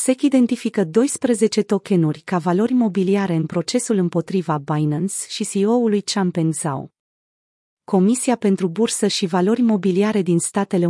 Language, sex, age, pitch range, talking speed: Romanian, female, 30-49, 175-220 Hz, 125 wpm